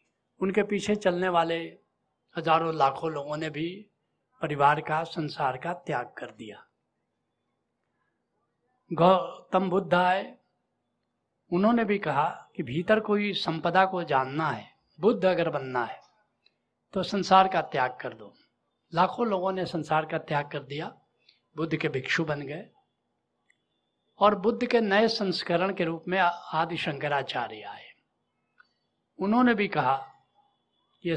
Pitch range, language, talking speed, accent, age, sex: 155-195 Hz, Hindi, 125 wpm, native, 60-79, male